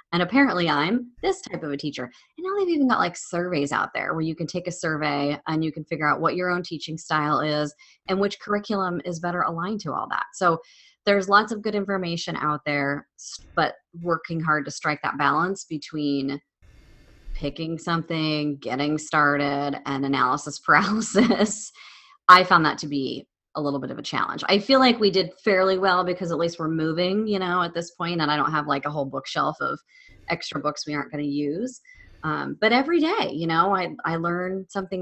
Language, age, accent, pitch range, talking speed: English, 30-49, American, 150-200 Hz, 205 wpm